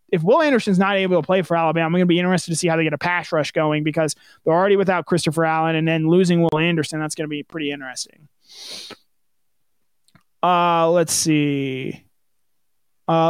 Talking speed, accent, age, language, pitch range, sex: 200 wpm, American, 20-39, English, 160-200 Hz, male